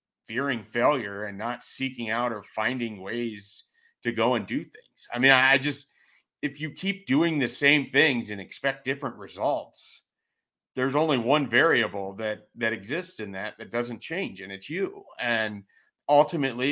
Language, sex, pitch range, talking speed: English, male, 110-145 Hz, 170 wpm